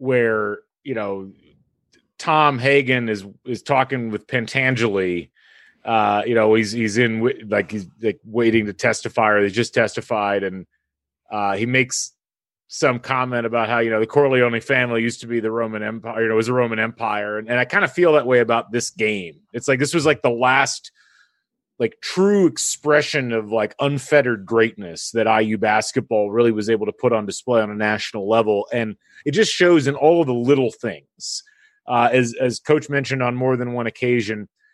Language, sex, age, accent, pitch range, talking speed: English, male, 30-49, American, 110-135 Hz, 190 wpm